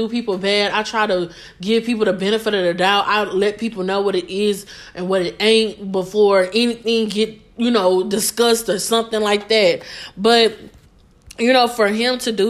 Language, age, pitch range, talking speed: English, 20-39, 195-235 Hz, 190 wpm